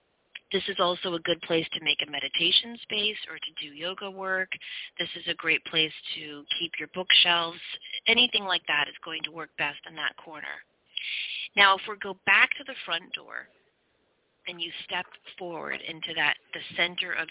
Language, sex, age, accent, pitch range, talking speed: English, female, 30-49, American, 160-190 Hz, 185 wpm